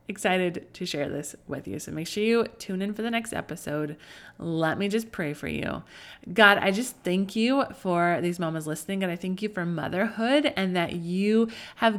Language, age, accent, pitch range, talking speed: English, 20-39, American, 175-230 Hz, 205 wpm